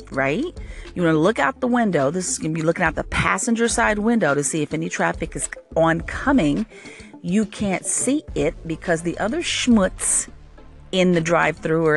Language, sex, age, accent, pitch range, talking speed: English, female, 40-59, American, 155-225 Hz, 200 wpm